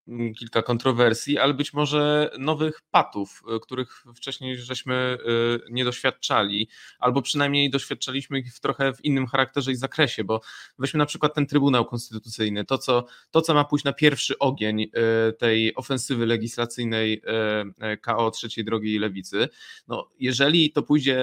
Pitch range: 120-145 Hz